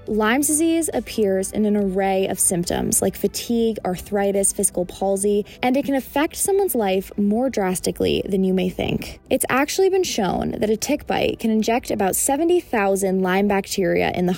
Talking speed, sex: 170 wpm, female